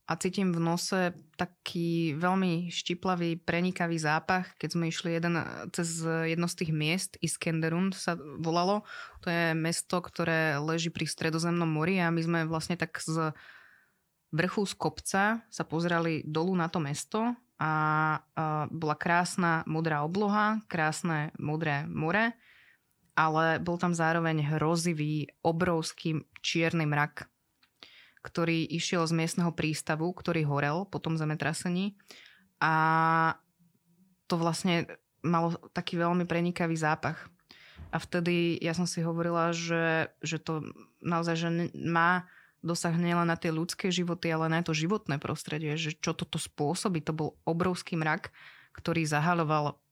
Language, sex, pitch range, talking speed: Slovak, female, 160-175 Hz, 135 wpm